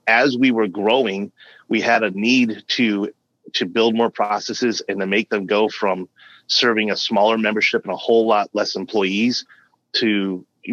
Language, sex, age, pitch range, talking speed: English, male, 30-49, 100-115 Hz, 175 wpm